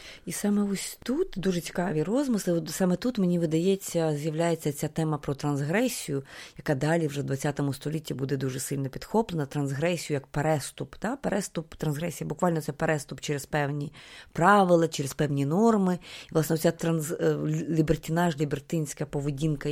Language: Ukrainian